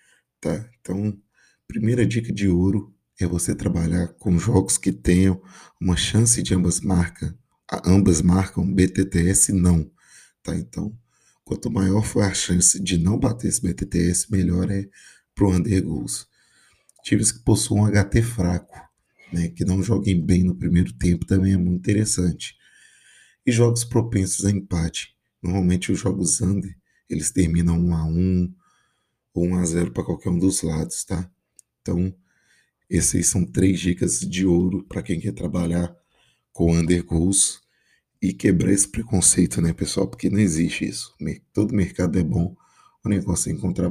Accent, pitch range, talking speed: Brazilian, 85-100 Hz, 155 wpm